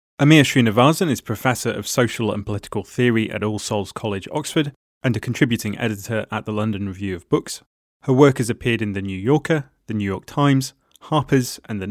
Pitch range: 110-135 Hz